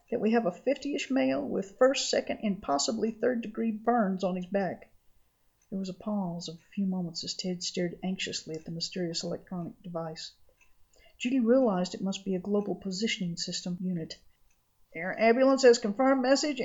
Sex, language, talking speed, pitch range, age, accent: female, English, 175 wpm, 180-235 Hz, 50-69, American